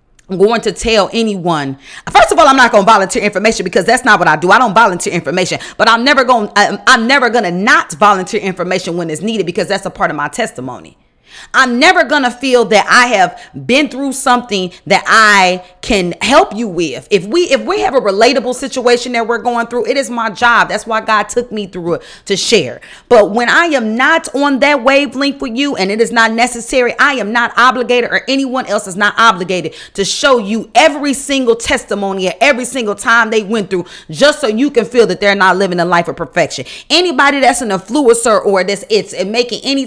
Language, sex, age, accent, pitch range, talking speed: English, female, 40-59, American, 195-260 Hz, 220 wpm